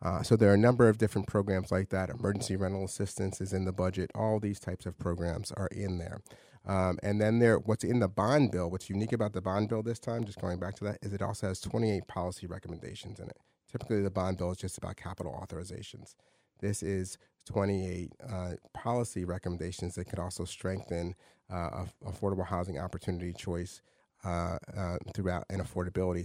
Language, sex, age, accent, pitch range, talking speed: English, male, 30-49, American, 90-105 Hz, 200 wpm